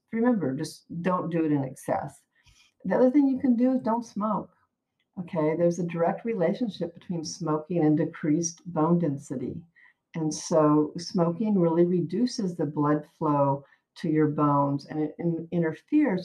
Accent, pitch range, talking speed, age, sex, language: American, 150-185 Hz, 150 wpm, 50-69, female, English